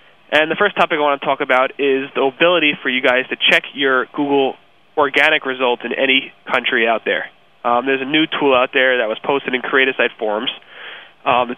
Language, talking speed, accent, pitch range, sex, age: English, 210 wpm, American, 130-150 Hz, male, 20-39